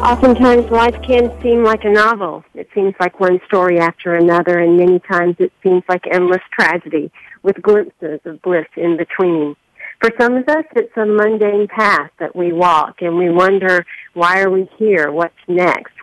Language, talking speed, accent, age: English, 180 wpm, American, 50-69